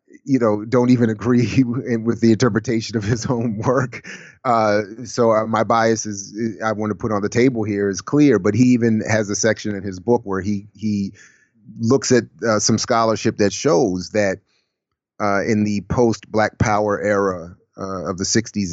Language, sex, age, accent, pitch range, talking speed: English, male, 30-49, American, 100-115 Hz, 190 wpm